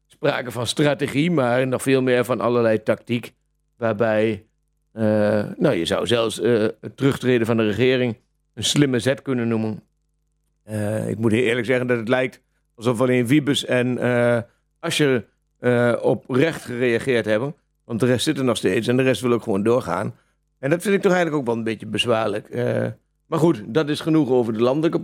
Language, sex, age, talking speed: Dutch, male, 50-69, 185 wpm